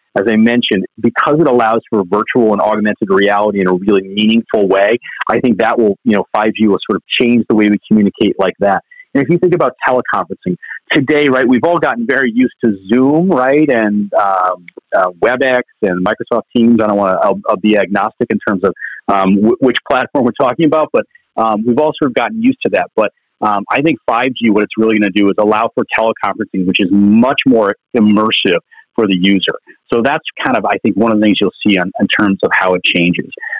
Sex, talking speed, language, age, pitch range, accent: male, 220 wpm, English, 40-59, 105-145 Hz, American